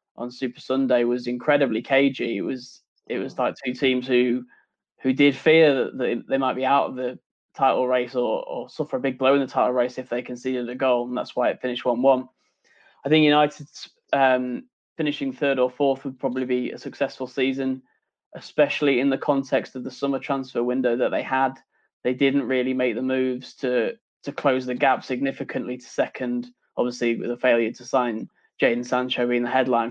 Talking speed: 195 wpm